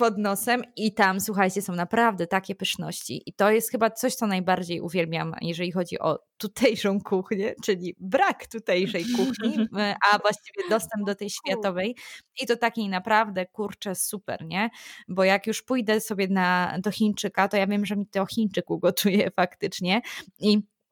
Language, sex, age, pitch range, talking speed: Polish, female, 20-39, 185-225 Hz, 165 wpm